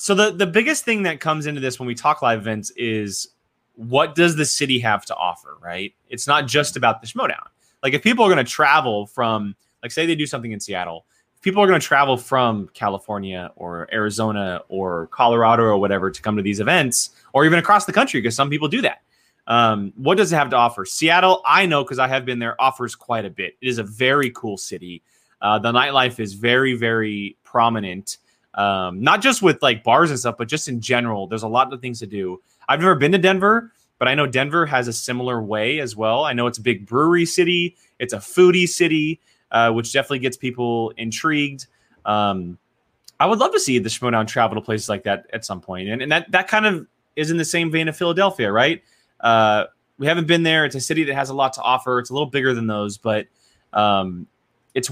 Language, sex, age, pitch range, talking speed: English, male, 20-39, 110-155 Hz, 225 wpm